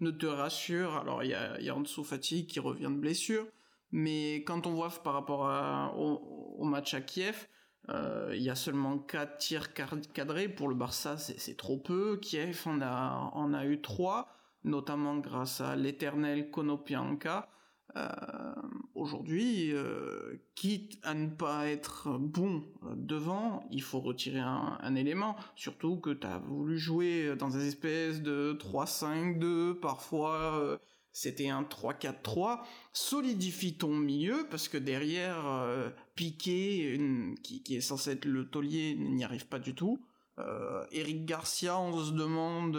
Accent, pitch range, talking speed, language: French, 145-175 Hz, 160 wpm, French